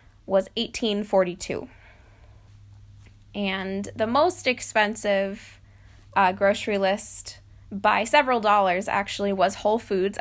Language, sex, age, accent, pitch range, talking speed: English, female, 20-39, American, 180-230 Hz, 95 wpm